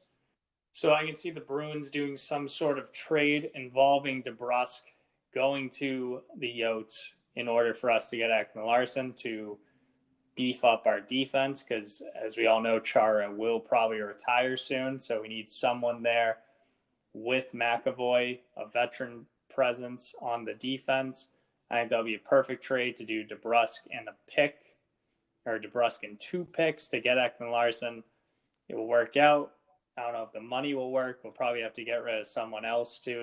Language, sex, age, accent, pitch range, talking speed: English, male, 20-39, American, 115-135 Hz, 170 wpm